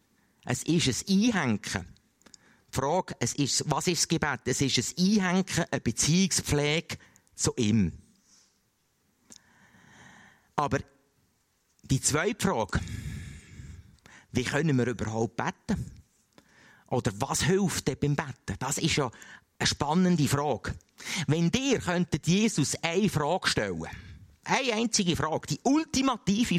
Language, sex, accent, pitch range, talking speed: German, male, Austrian, 125-185 Hz, 120 wpm